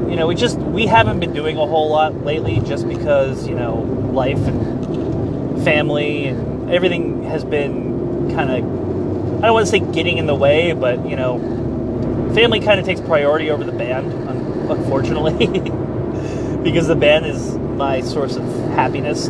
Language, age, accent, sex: English, 30-49, American, male